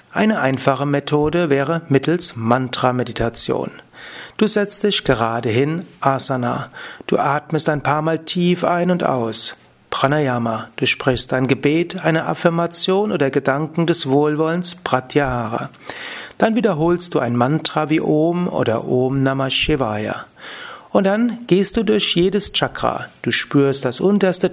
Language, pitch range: German, 130-170 Hz